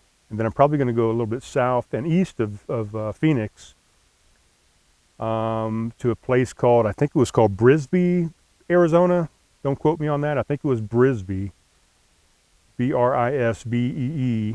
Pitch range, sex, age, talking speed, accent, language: 105-130 Hz, male, 40-59, 165 wpm, American, English